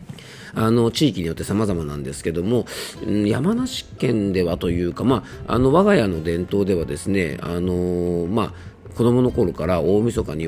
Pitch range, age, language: 85-120 Hz, 40-59, Japanese